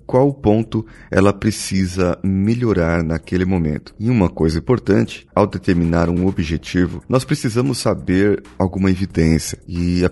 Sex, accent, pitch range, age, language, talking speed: male, Brazilian, 85-115 Hz, 30-49, Portuguese, 130 wpm